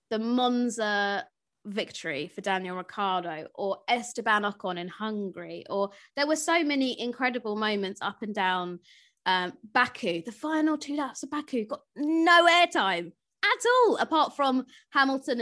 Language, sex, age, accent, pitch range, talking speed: English, female, 20-39, British, 200-290 Hz, 145 wpm